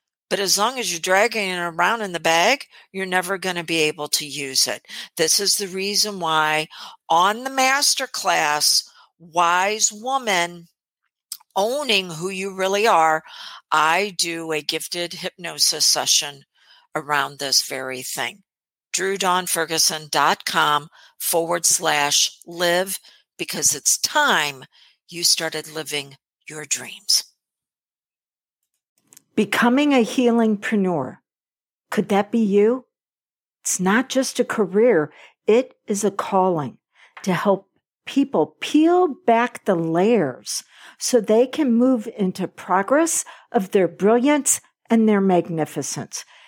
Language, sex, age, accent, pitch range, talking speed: English, female, 50-69, American, 160-215 Hz, 120 wpm